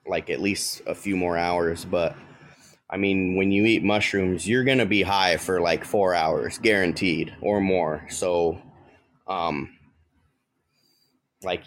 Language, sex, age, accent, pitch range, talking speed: English, male, 20-39, American, 85-100 Hz, 145 wpm